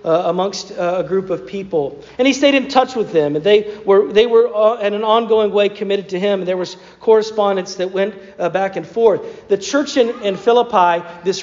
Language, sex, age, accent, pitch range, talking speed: English, male, 40-59, American, 170-215 Hz, 225 wpm